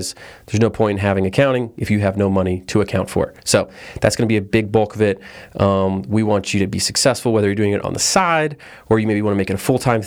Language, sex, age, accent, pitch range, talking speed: English, male, 30-49, American, 95-115 Hz, 290 wpm